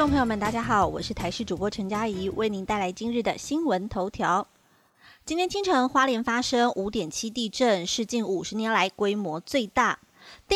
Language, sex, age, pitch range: Chinese, female, 30-49, 195-250 Hz